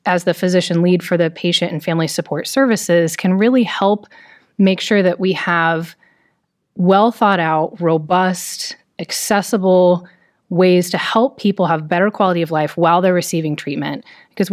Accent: American